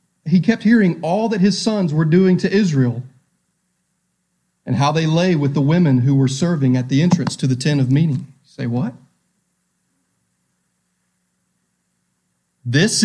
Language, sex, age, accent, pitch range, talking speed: English, male, 30-49, American, 160-245 Hz, 145 wpm